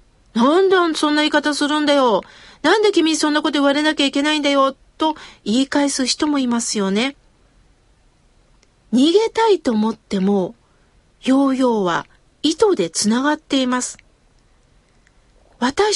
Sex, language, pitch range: female, Japanese, 235-325 Hz